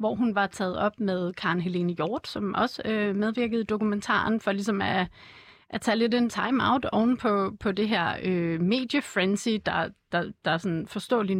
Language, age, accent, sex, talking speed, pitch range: Danish, 30-49, native, female, 175 wpm, 185-230 Hz